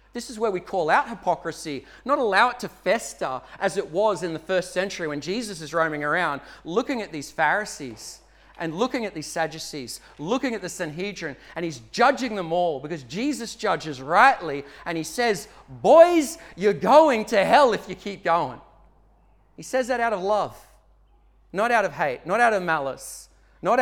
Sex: male